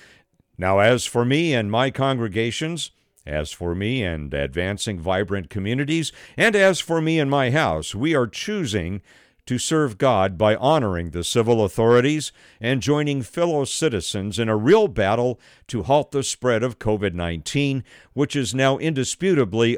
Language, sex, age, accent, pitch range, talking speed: English, male, 60-79, American, 100-150 Hz, 150 wpm